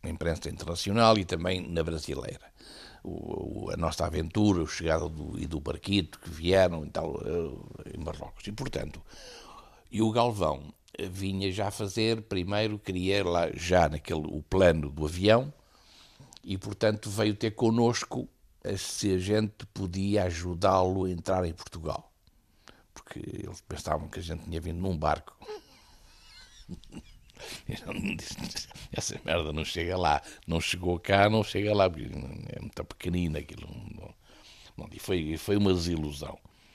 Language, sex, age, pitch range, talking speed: Portuguese, male, 60-79, 80-100 Hz, 135 wpm